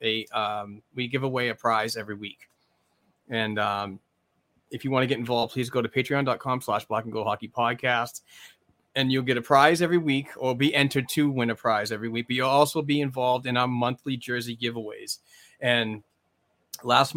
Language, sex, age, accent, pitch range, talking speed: English, male, 30-49, American, 110-135 Hz, 190 wpm